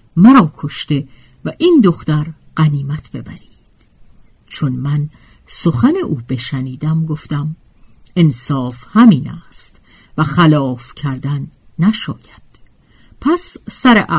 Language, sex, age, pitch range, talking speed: Persian, female, 50-69, 140-215 Hz, 95 wpm